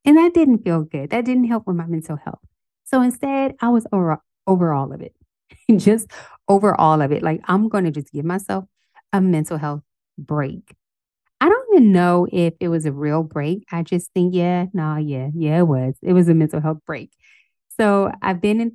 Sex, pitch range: female, 155-200 Hz